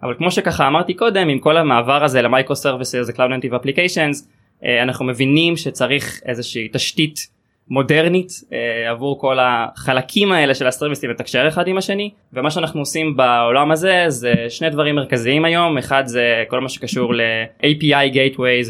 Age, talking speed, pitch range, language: 20-39, 155 wpm, 125-165 Hz, Hebrew